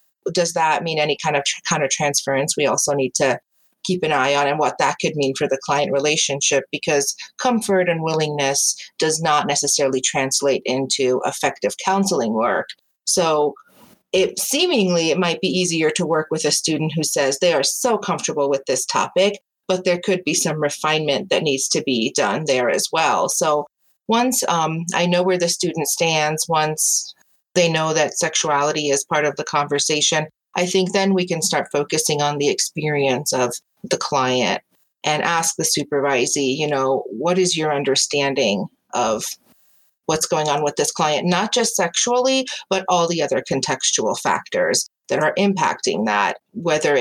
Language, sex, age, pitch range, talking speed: English, female, 30-49, 145-185 Hz, 175 wpm